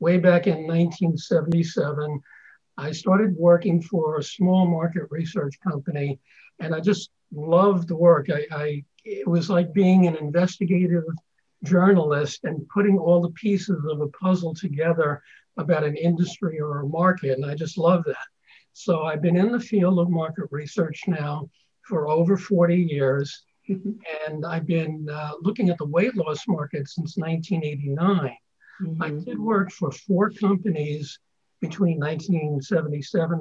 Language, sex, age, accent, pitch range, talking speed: English, male, 60-79, American, 150-185 Hz, 145 wpm